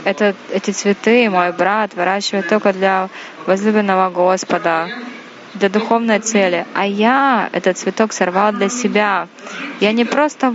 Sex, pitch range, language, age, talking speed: female, 185-220 Hz, Russian, 20-39, 125 wpm